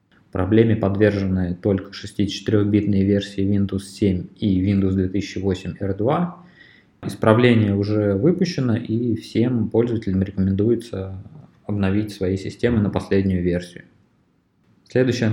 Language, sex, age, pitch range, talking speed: Russian, male, 20-39, 95-110 Hz, 100 wpm